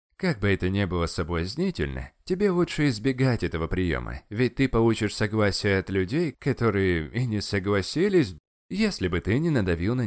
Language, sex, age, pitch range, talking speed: Russian, male, 20-39, 95-135 Hz, 160 wpm